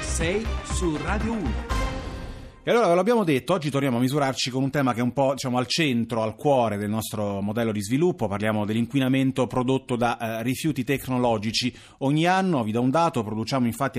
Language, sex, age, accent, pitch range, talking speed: Italian, male, 30-49, native, 115-135 Hz, 190 wpm